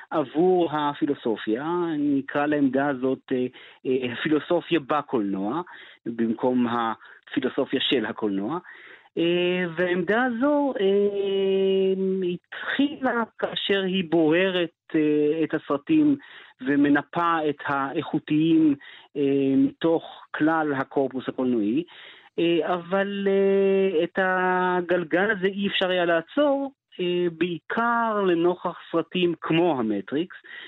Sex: male